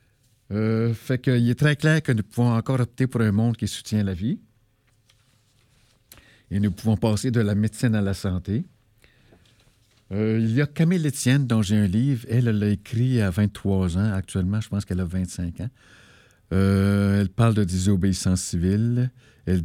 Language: French